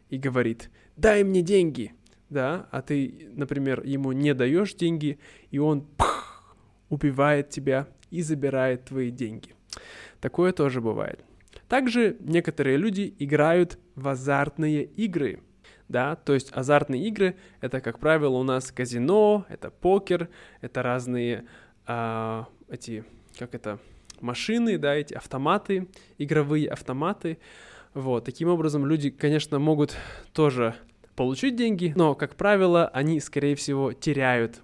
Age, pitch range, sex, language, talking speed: 20-39, 130-165 Hz, male, Russian, 125 wpm